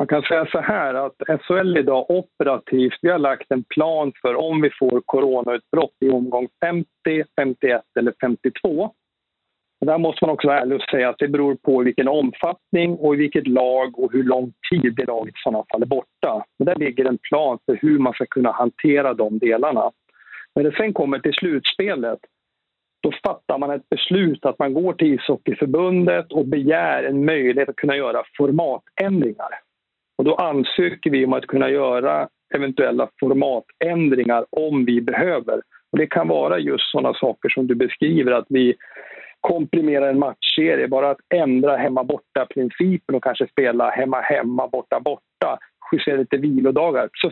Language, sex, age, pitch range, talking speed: Swedish, male, 50-69, 130-160 Hz, 160 wpm